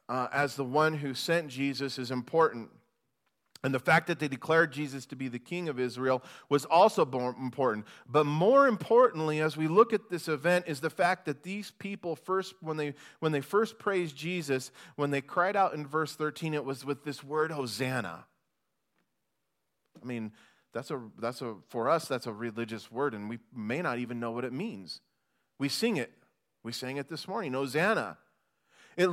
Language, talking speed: English, 190 wpm